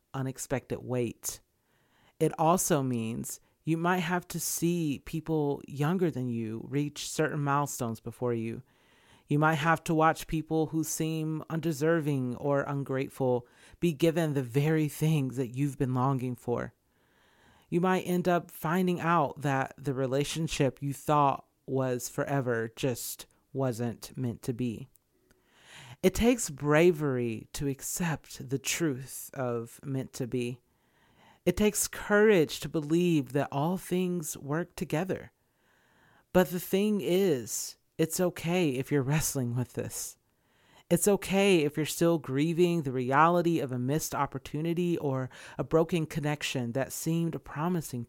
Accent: American